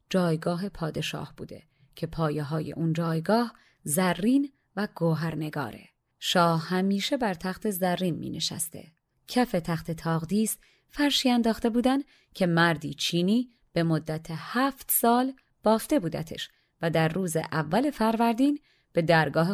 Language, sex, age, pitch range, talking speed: Persian, female, 30-49, 165-210 Hz, 125 wpm